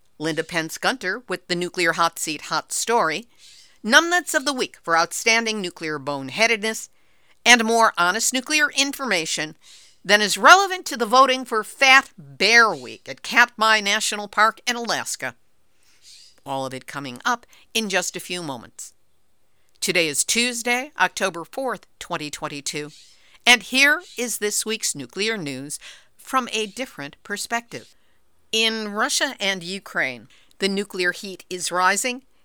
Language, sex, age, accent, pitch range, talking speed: English, female, 50-69, American, 180-240 Hz, 135 wpm